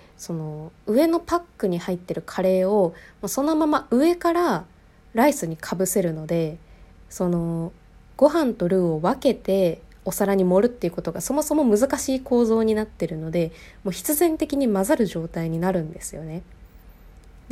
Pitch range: 170-240 Hz